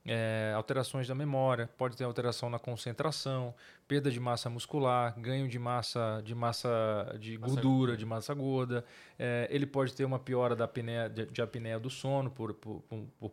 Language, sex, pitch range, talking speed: Portuguese, male, 120-140 Hz, 180 wpm